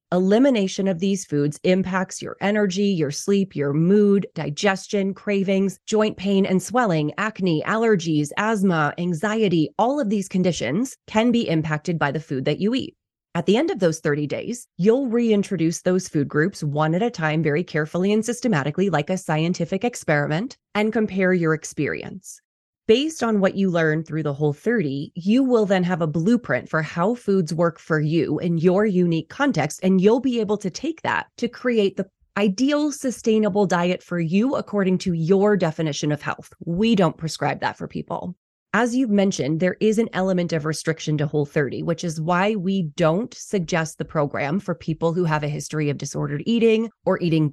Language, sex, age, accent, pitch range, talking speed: English, female, 30-49, American, 160-210 Hz, 180 wpm